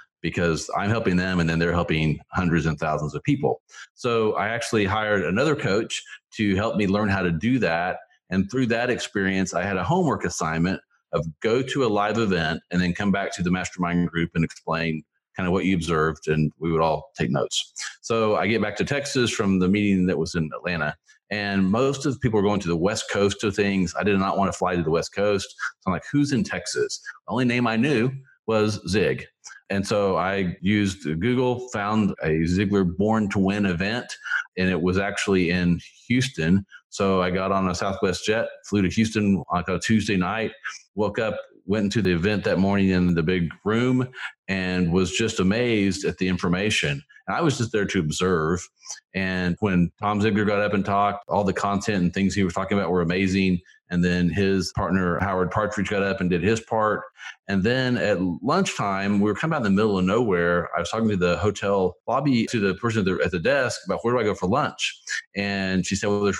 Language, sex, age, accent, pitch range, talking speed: English, male, 40-59, American, 90-105 Hz, 215 wpm